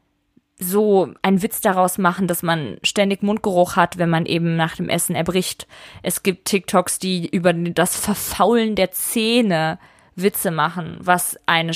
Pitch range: 180-205 Hz